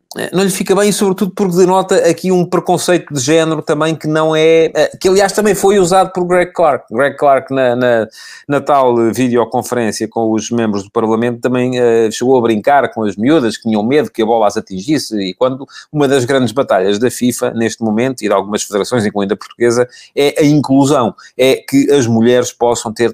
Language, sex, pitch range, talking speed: Portuguese, male, 115-155 Hz, 200 wpm